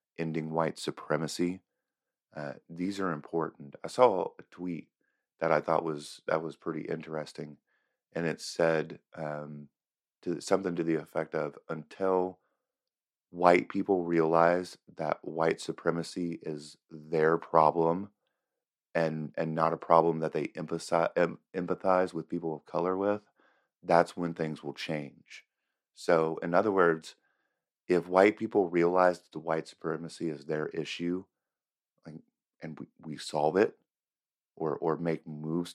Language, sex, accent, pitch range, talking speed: English, male, American, 80-90 Hz, 140 wpm